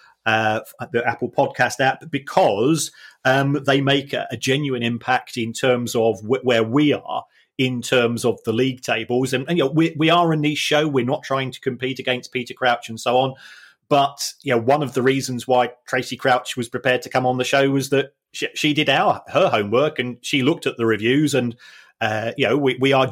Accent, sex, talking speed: British, male, 220 wpm